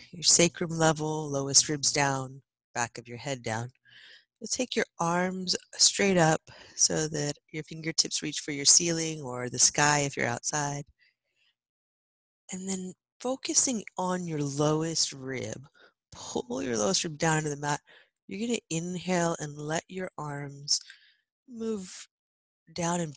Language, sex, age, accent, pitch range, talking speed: English, female, 30-49, American, 145-185 Hz, 150 wpm